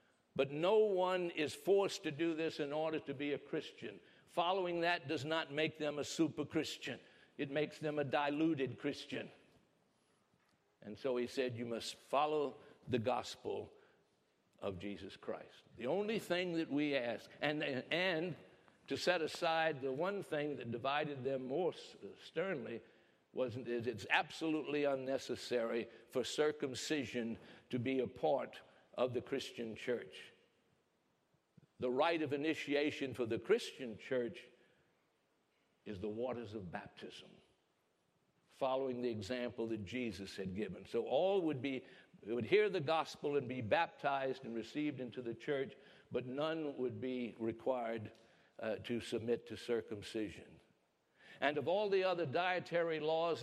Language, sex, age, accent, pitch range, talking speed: English, male, 60-79, American, 125-160 Hz, 145 wpm